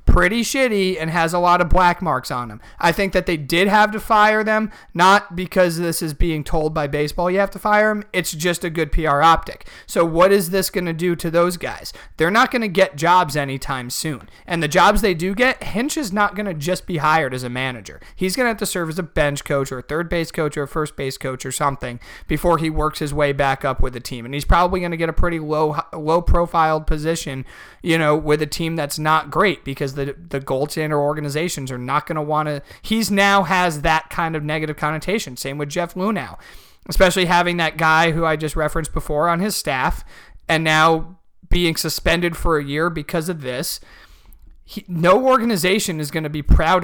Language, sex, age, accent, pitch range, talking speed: English, male, 30-49, American, 145-180 Hz, 230 wpm